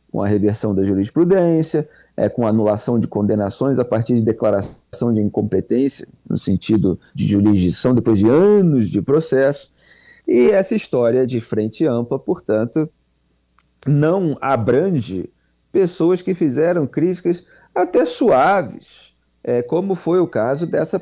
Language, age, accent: Portuguese, 40-59, Brazilian